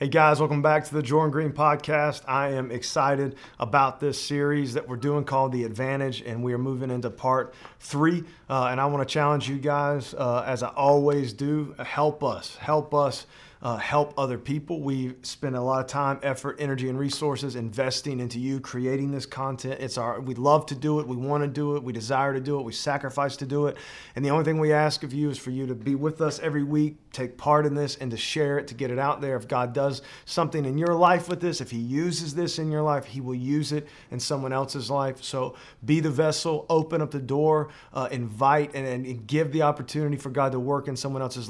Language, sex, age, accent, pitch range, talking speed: English, male, 40-59, American, 130-145 Hz, 235 wpm